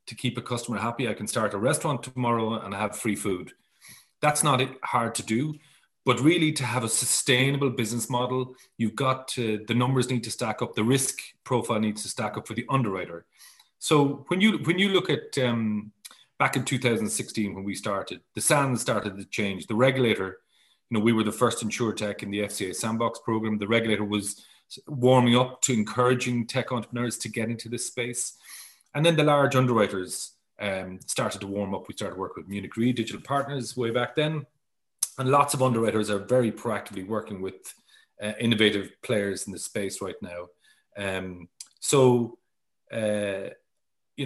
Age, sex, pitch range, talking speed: 30-49, male, 105-130 Hz, 185 wpm